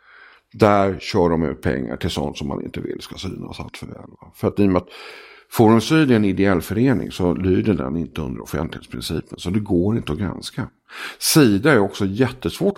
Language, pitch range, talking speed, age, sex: English, 80-120 Hz, 200 wpm, 50-69, male